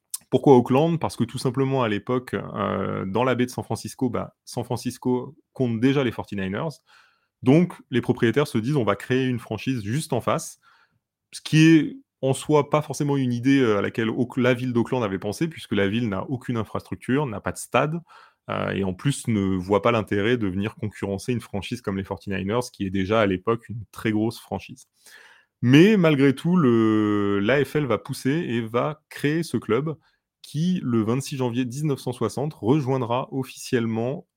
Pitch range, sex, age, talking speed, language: 105-135 Hz, male, 30-49, 185 wpm, French